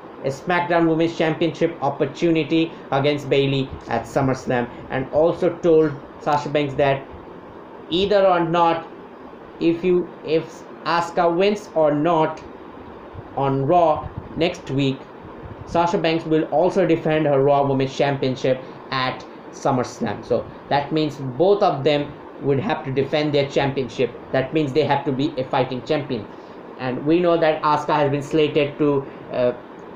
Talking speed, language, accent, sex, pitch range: 140 wpm, English, Indian, male, 140-165 Hz